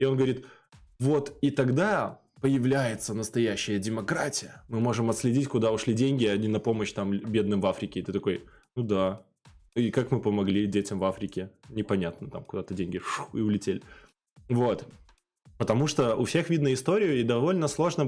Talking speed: 170 wpm